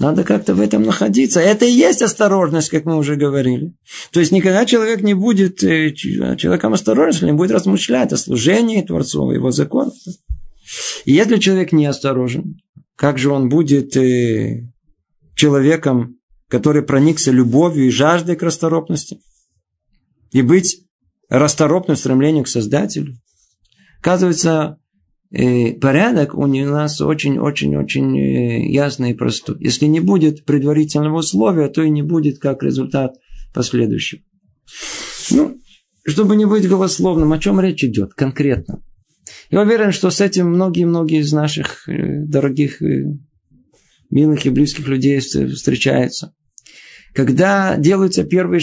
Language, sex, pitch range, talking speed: Russian, male, 135-180 Hz, 120 wpm